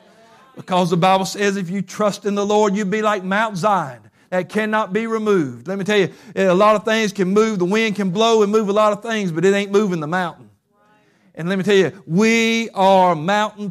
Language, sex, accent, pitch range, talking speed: English, male, American, 165-195 Hz, 235 wpm